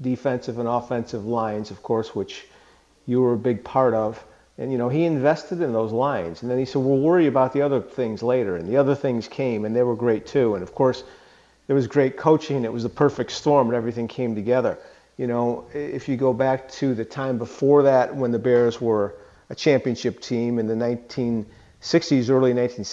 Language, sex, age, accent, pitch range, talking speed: English, male, 40-59, American, 120-150 Hz, 210 wpm